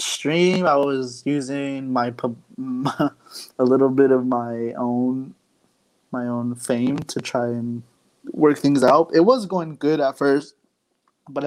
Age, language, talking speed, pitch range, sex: 20-39, English, 145 wpm, 120-135 Hz, male